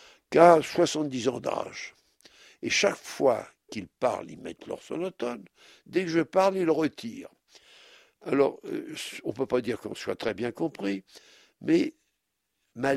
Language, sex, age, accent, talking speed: French, male, 60-79, French, 155 wpm